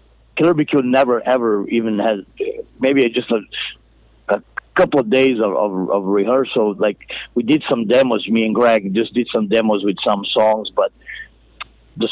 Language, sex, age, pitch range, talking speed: English, male, 50-69, 105-125 Hz, 165 wpm